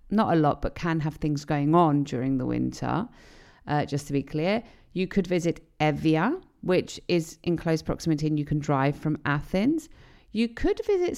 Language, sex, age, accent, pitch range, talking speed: Greek, female, 40-59, British, 155-200 Hz, 190 wpm